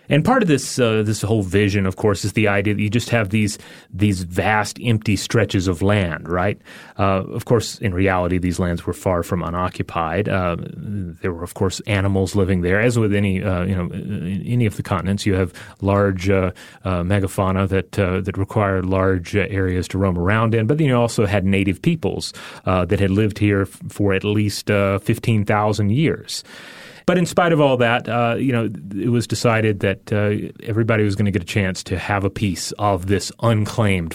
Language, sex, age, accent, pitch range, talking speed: English, male, 30-49, American, 100-120 Hz, 205 wpm